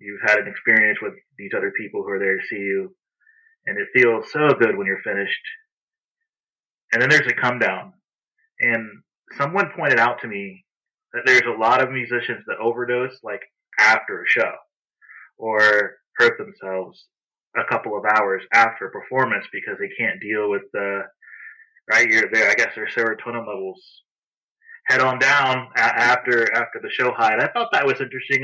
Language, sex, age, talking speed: English, male, 20-39, 175 wpm